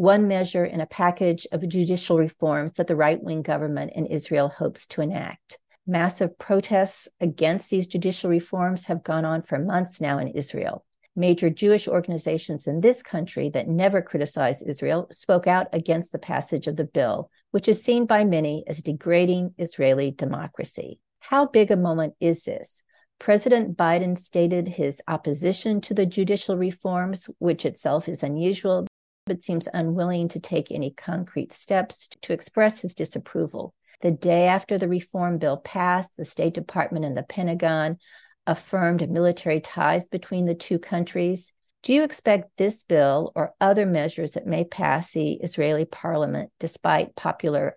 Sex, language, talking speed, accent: female, English, 155 wpm, American